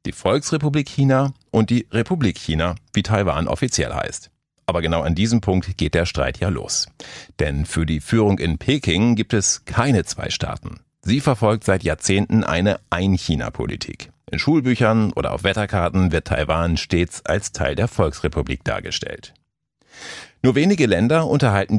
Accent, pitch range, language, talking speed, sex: German, 85-115 Hz, German, 150 wpm, male